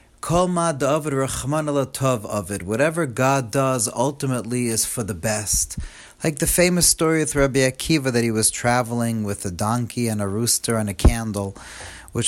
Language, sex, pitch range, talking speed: English, male, 105-140 Hz, 140 wpm